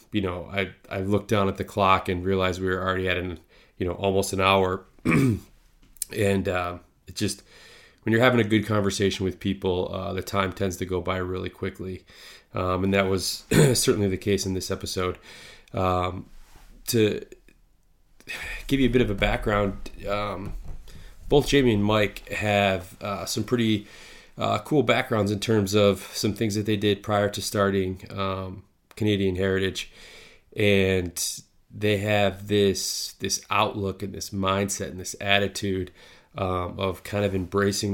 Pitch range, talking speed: 95-105 Hz, 165 wpm